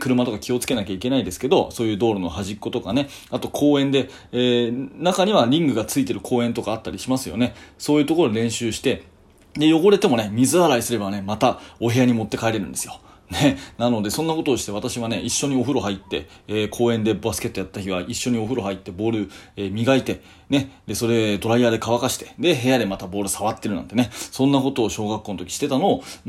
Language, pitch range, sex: Japanese, 105-140 Hz, male